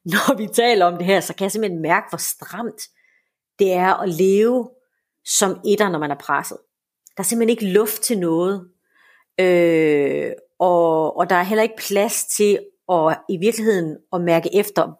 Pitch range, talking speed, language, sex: 175-215 Hz, 180 wpm, Danish, female